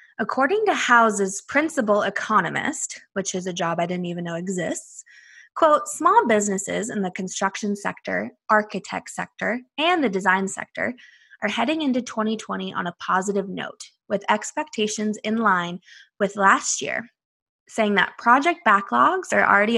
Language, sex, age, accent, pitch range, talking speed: English, female, 20-39, American, 195-265 Hz, 145 wpm